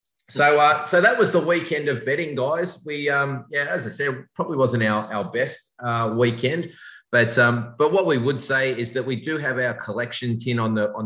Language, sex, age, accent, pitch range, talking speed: English, male, 30-49, Australian, 105-130 Hz, 220 wpm